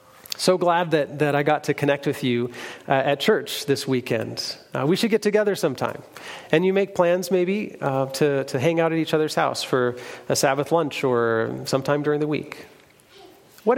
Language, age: English, 40-59